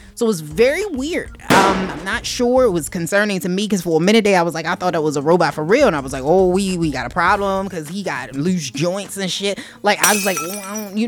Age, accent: 20-39, American